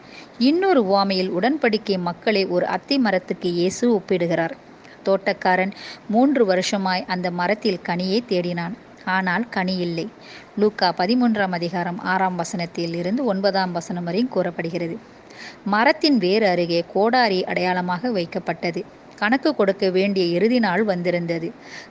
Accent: Indian